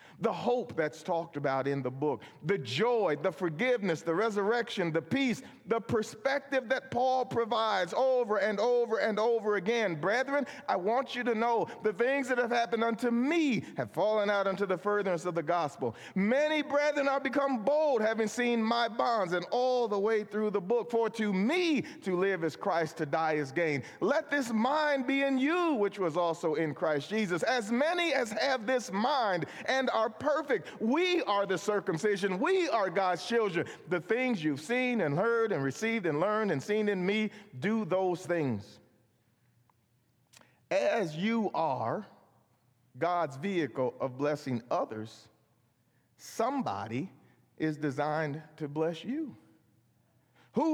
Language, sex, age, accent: English, male, 40-59, American